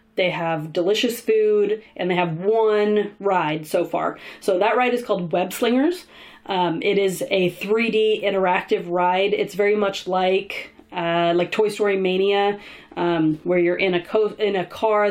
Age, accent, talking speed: 30-49, American, 175 wpm